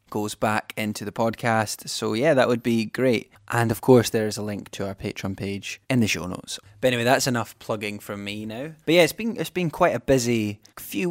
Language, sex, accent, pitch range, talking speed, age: English, male, British, 105-125 Hz, 240 wpm, 10-29